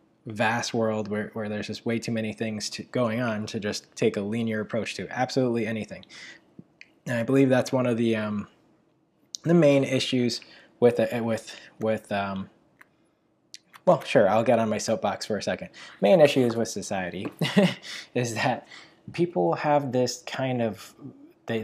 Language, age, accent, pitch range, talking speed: English, 20-39, American, 105-125 Hz, 170 wpm